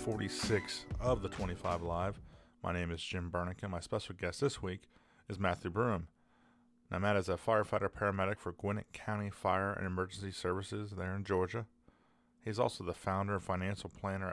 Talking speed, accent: 175 wpm, American